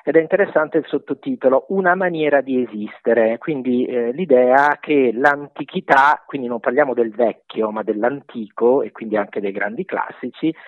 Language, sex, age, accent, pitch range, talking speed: Italian, male, 50-69, native, 125-165 Hz, 150 wpm